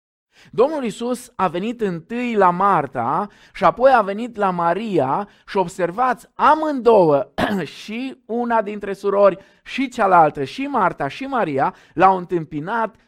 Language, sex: Romanian, male